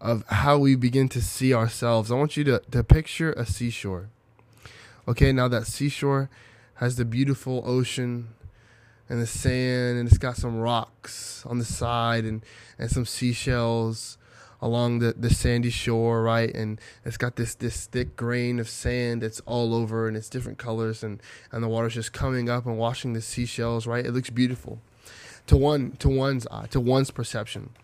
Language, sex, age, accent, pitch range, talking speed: English, male, 20-39, American, 115-125 Hz, 180 wpm